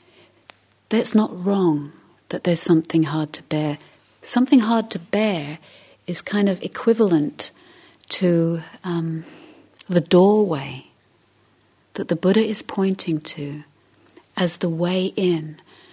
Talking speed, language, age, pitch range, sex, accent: 115 wpm, English, 40-59, 150-195 Hz, female, British